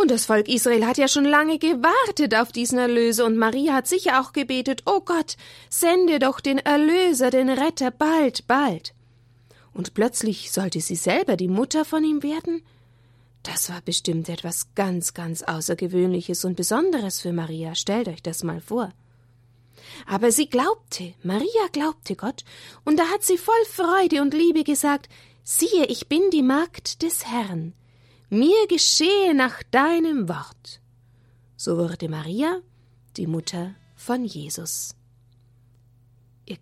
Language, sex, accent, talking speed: German, female, German, 145 wpm